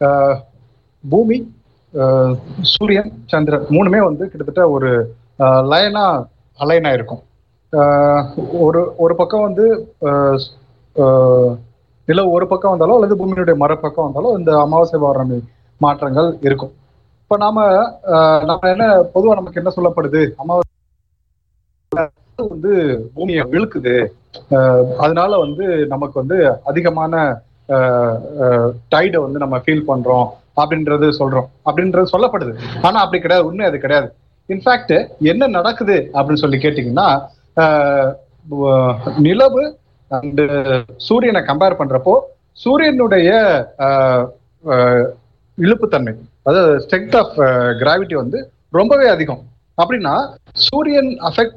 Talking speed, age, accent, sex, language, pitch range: 90 wpm, 30-49, native, male, Tamil, 130-180 Hz